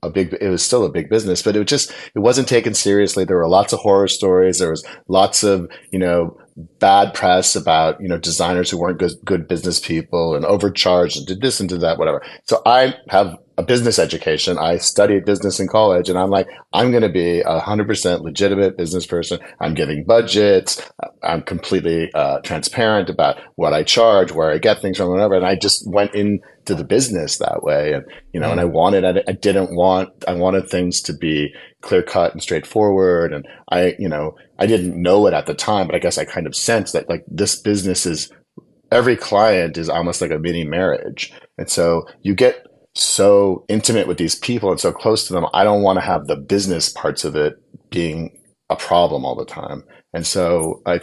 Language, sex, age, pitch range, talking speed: English, male, 40-59, 85-100 Hz, 215 wpm